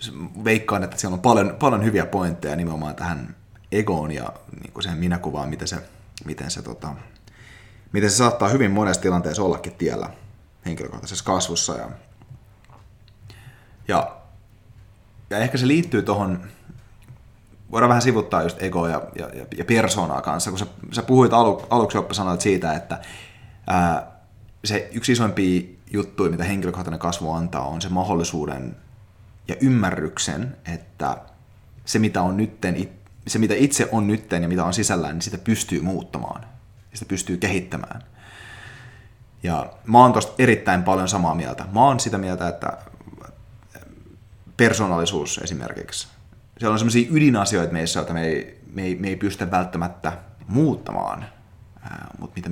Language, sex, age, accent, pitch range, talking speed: Finnish, male, 30-49, native, 90-115 Hz, 140 wpm